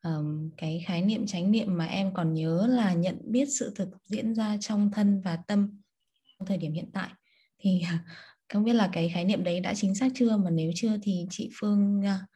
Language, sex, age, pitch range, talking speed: Vietnamese, female, 20-39, 170-210 Hz, 210 wpm